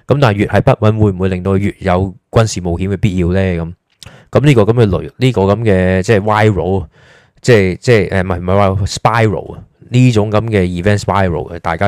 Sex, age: male, 20-39